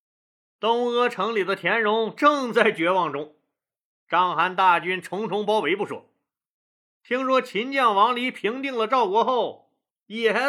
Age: 30-49